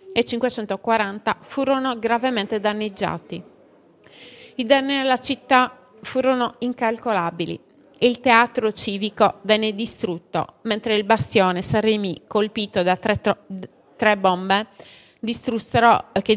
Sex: female